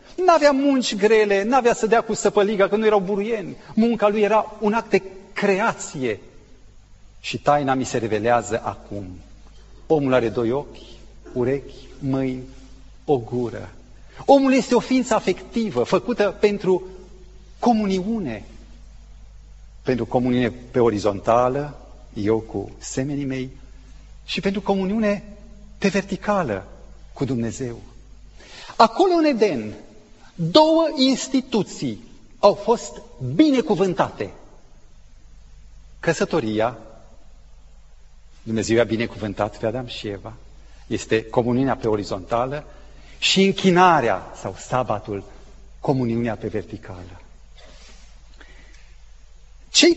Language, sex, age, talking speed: Romanian, male, 40-59, 105 wpm